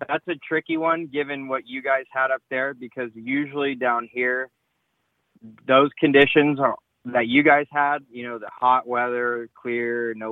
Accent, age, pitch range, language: American, 20-39, 105-130 Hz, English